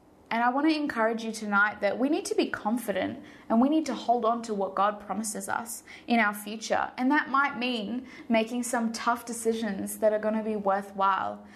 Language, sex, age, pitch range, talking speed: English, female, 20-39, 215-245 Hz, 200 wpm